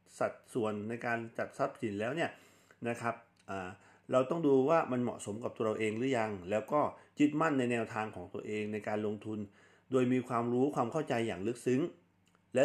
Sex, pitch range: male, 105-130 Hz